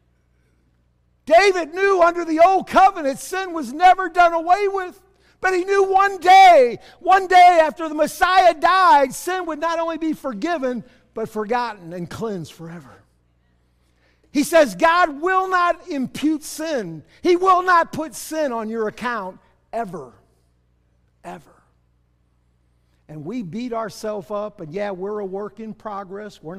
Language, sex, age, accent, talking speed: English, male, 50-69, American, 145 wpm